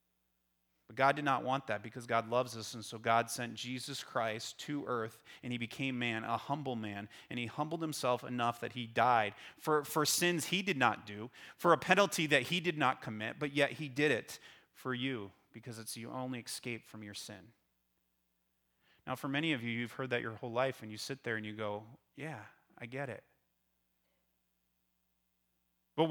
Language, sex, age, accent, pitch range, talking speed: English, male, 30-49, American, 110-170 Hz, 195 wpm